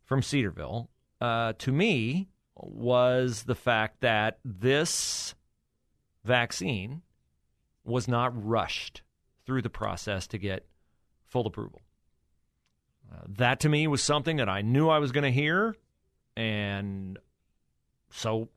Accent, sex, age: American, male, 40-59